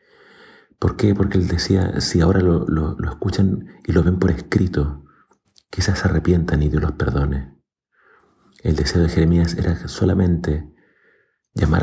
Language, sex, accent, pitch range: Spanish, male, Argentinian, 75-90 Hz